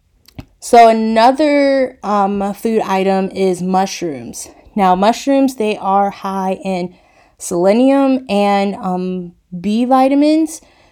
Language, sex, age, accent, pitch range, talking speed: English, female, 20-39, American, 180-210 Hz, 100 wpm